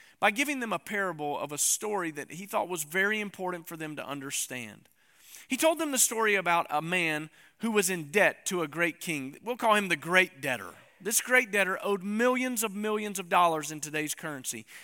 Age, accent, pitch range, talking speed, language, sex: 40-59, American, 175-245 Hz, 210 wpm, English, male